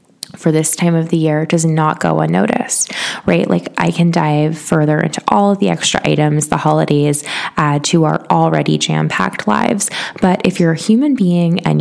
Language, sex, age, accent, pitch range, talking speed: English, female, 20-39, American, 155-195 Hz, 190 wpm